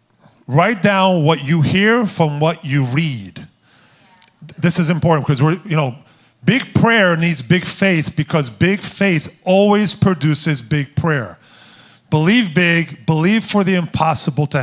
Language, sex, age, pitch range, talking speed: English, male, 40-59, 145-185 Hz, 145 wpm